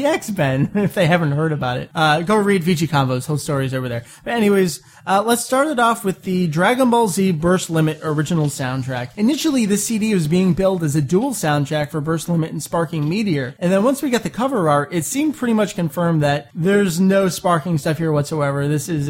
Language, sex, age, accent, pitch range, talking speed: English, male, 30-49, American, 145-195 Hz, 225 wpm